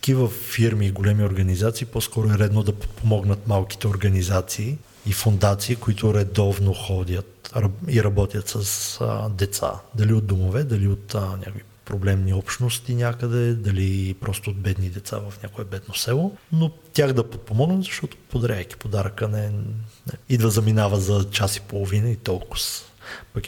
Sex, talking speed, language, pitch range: male, 155 wpm, Bulgarian, 100-115 Hz